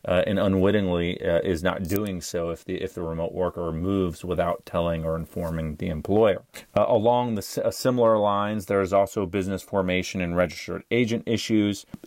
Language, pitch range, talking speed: English, 85-105 Hz, 180 wpm